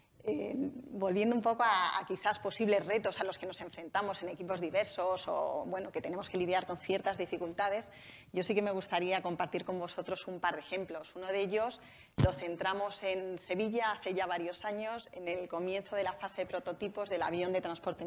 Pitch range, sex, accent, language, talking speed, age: 180-200 Hz, female, Spanish, Spanish, 200 wpm, 30-49